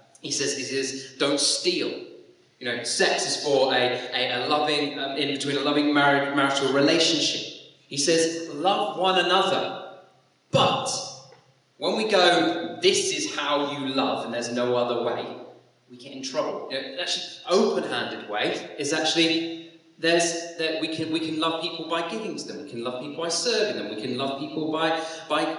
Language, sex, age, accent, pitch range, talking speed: English, male, 30-49, British, 140-195 Hz, 185 wpm